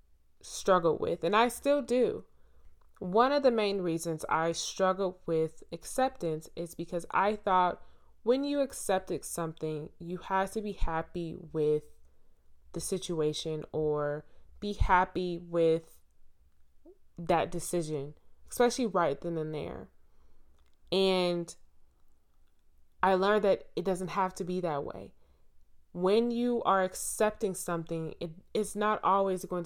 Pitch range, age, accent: 150-190 Hz, 20-39, American